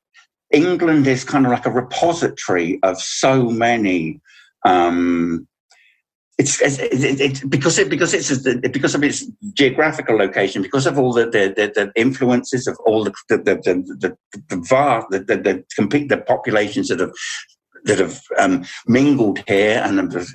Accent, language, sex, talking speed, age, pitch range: British, English, male, 170 wpm, 60-79, 95-140 Hz